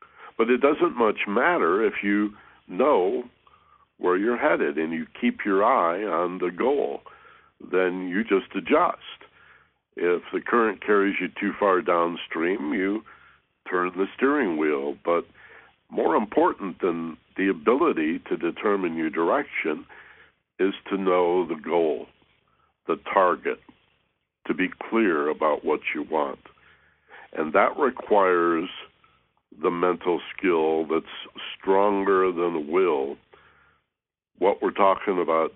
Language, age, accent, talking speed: English, 60-79, American, 125 wpm